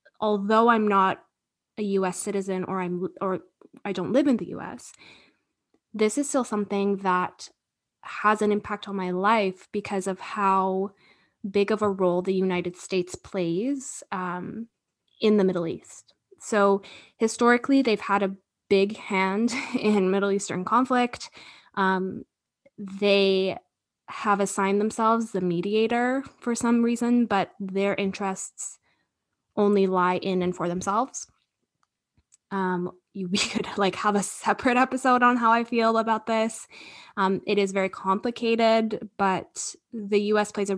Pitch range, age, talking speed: 190-225 Hz, 10-29, 140 wpm